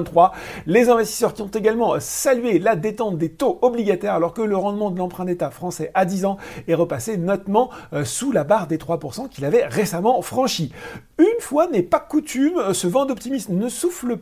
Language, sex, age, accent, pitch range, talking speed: French, male, 40-59, French, 170-250 Hz, 185 wpm